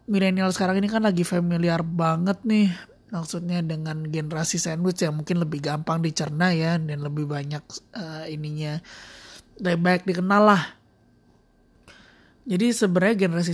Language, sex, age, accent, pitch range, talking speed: Indonesian, male, 20-39, native, 170-205 Hz, 135 wpm